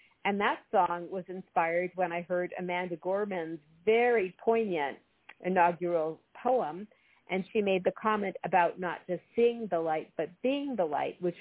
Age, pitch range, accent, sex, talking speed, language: 50-69, 170-195 Hz, American, female, 160 wpm, English